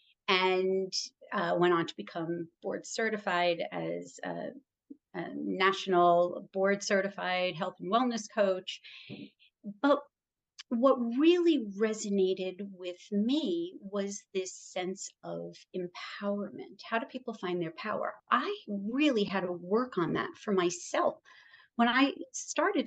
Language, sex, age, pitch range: English, female, 40-59, 190-270 Hz